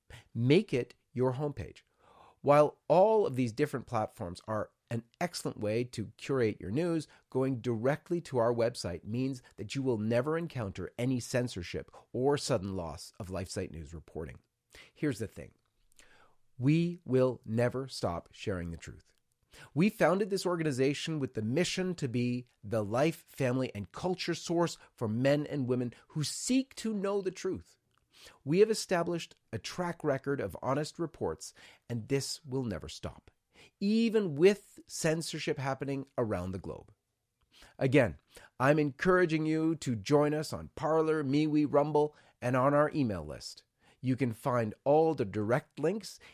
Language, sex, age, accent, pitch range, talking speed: English, male, 40-59, American, 110-155 Hz, 150 wpm